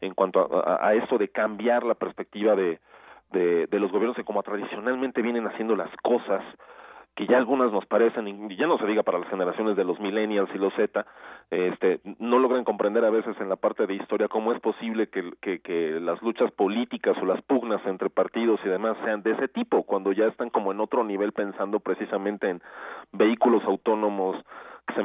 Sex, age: male, 40-59